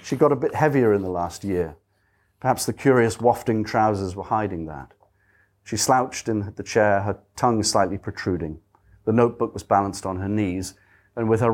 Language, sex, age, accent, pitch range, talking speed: English, male, 40-59, British, 100-125 Hz, 185 wpm